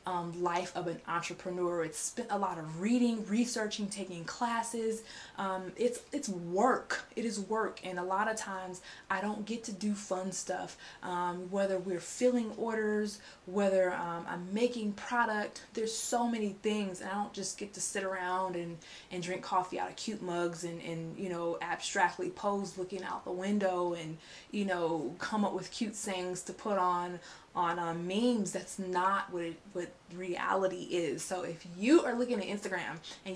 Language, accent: English, American